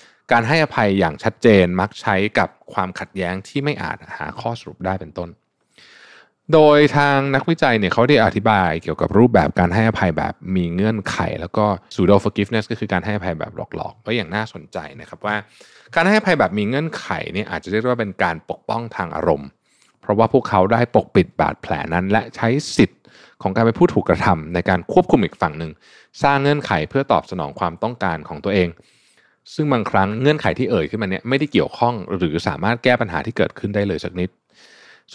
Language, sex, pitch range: Thai, male, 90-120 Hz